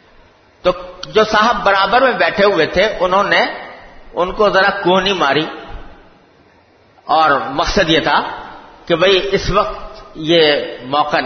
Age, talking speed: 50-69, 125 wpm